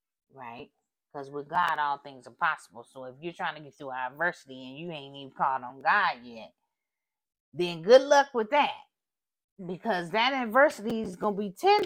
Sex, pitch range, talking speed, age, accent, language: female, 145-215 Hz, 185 wpm, 30-49, American, English